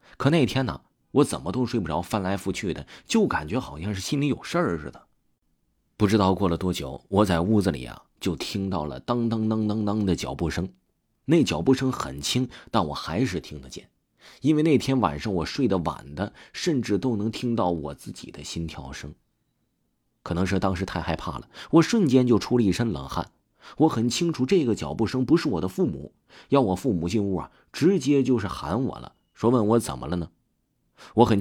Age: 30-49